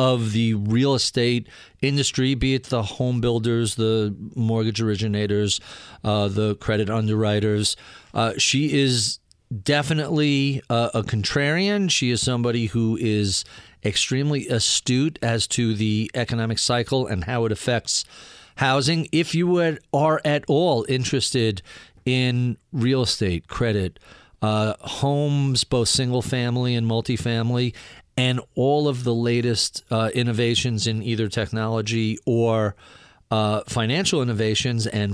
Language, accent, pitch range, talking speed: English, American, 110-130 Hz, 125 wpm